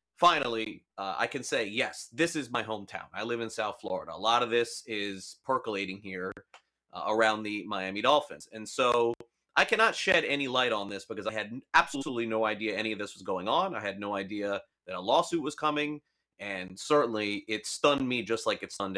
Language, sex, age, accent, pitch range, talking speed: English, male, 30-49, American, 105-130 Hz, 210 wpm